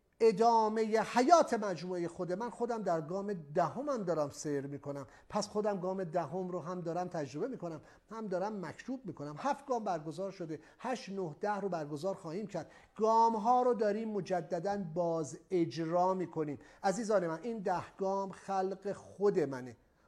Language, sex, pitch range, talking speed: English, male, 170-235 Hz, 160 wpm